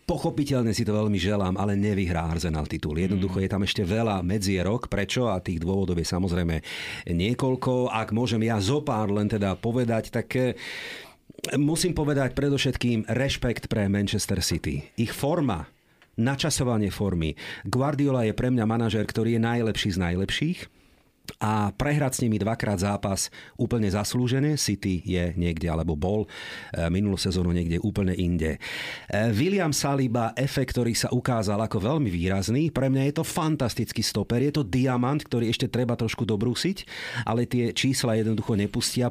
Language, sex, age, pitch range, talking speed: Slovak, male, 50-69, 100-125 Hz, 150 wpm